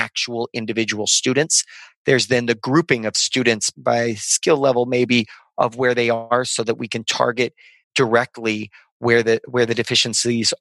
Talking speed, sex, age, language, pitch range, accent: 160 wpm, male, 30-49, English, 110-125 Hz, American